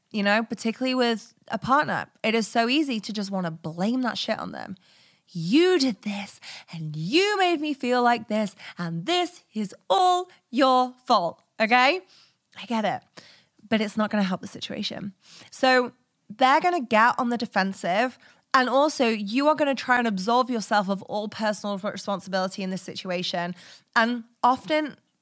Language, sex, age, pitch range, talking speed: English, female, 20-39, 200-260 Hz, 175 wpm